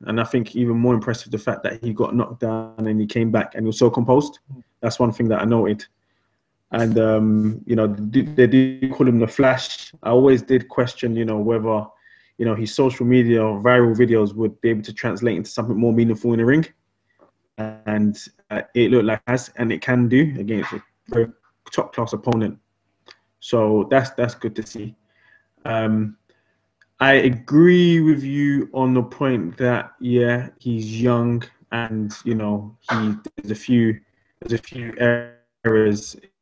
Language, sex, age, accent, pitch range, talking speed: English, male, 20-39, British, 110-125 Hz, 180 wpm